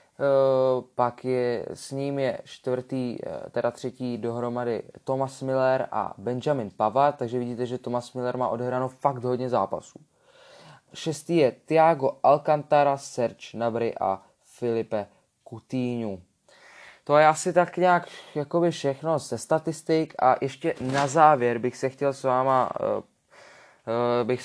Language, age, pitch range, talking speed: Czech, 20-39, 115-135 Hz, 130 wpm